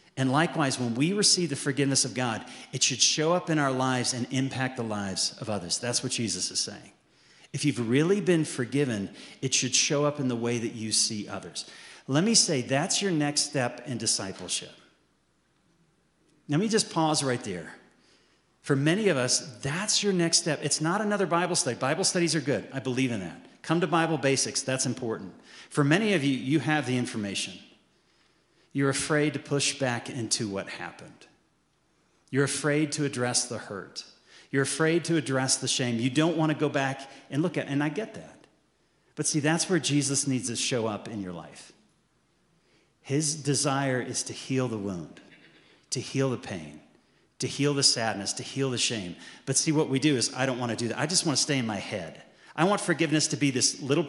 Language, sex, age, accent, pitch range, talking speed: English, male, 40-59, American, 125-160 Hz, 200 wpm